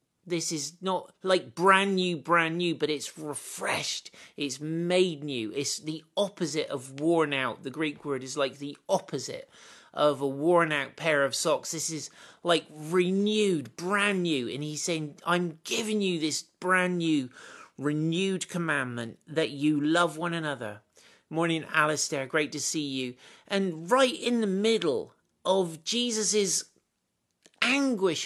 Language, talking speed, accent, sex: English, 150 wpm, British, male